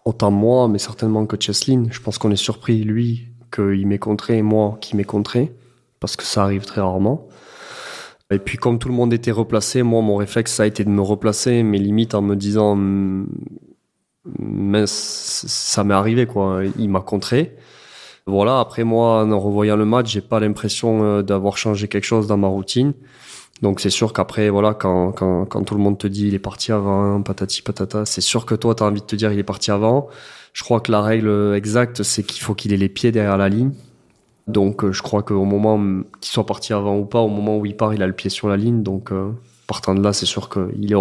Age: 20-39